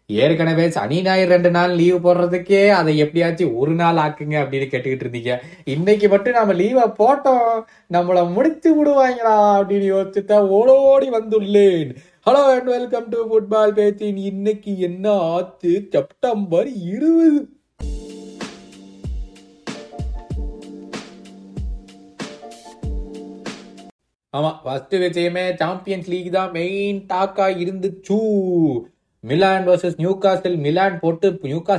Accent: native